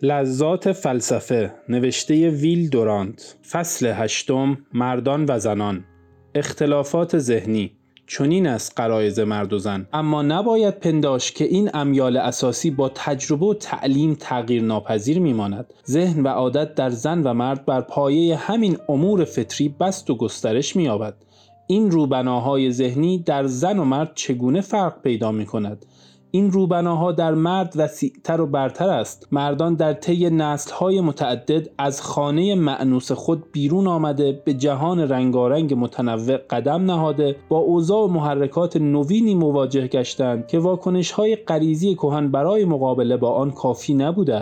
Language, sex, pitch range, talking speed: Persian, male, 125-165 Hz, 140 wpm